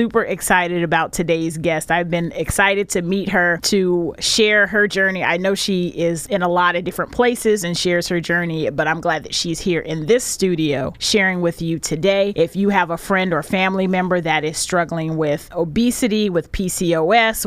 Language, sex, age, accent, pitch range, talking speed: English, female, 30-49, American, 170-225 Hz, 195 wpm